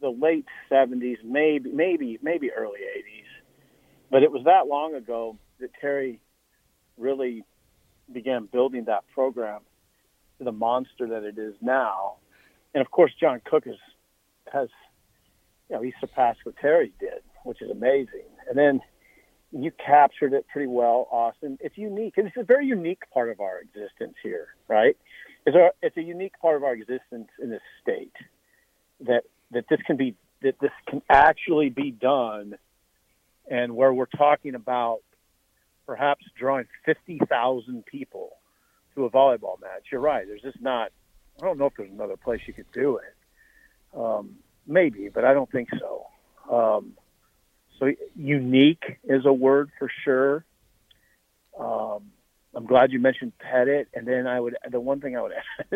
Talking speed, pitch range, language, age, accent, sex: 160 wpm, 125-185 Hz, English, 50-69, American, male